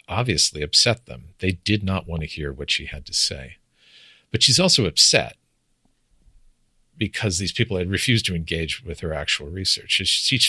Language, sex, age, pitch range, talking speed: English, male, 50-69, 75-95 Hz, 170 wpm